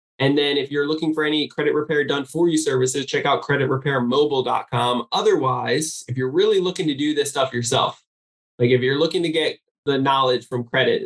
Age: 10-29